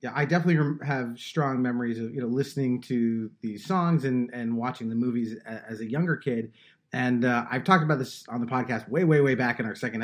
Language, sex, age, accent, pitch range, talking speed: English, male, 30-49, American, 120-140 Hz, 225 wpm